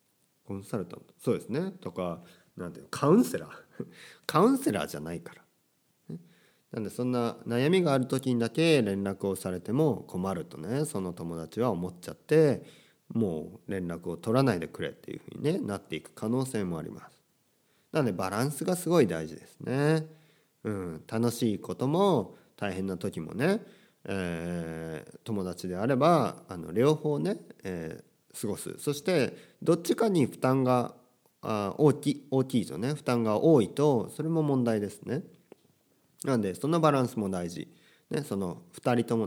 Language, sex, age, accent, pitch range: Japanese, male, 40-59, native, 100-160 Hz